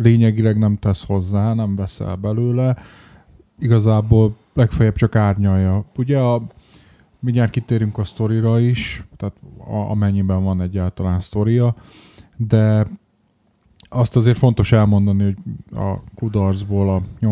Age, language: 20-39, Hungarian